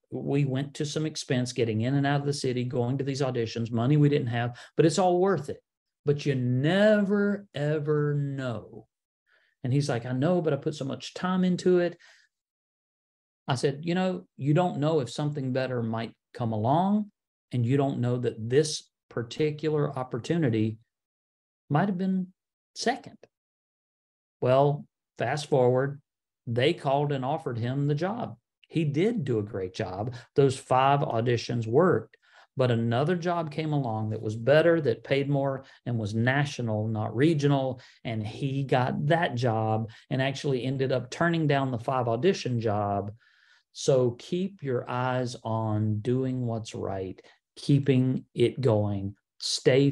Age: 50-69